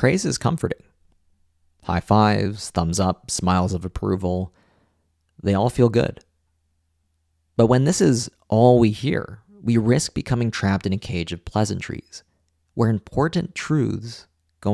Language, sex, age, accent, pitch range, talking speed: English, male, 30-49, American, 80-115 Hz, 140 wpm